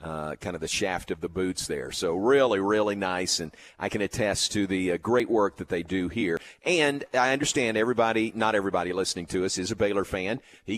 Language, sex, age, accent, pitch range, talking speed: English, male, 50-69, American, 95-120 Hz, 225 wpm